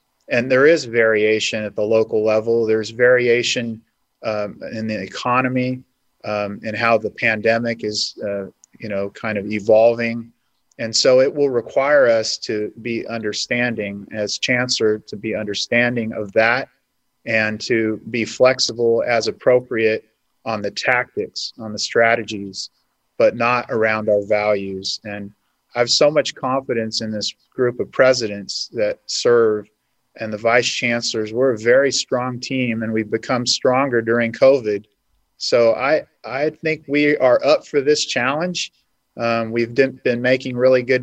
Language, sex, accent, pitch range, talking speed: English, male, American, 110-125 Hz, 150 wpm